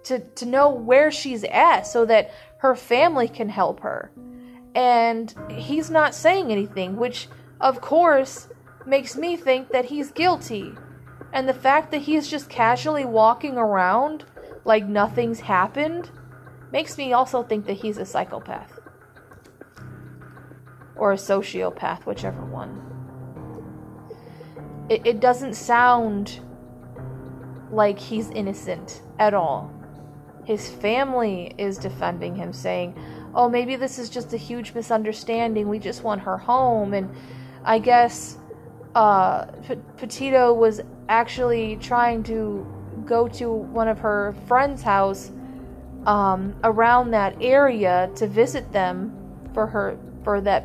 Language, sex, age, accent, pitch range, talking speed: English, female, 30-49, American, 200-250 Hz, 125 wpm